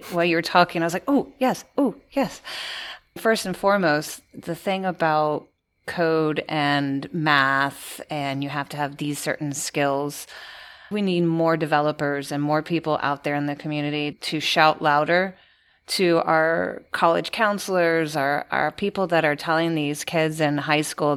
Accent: American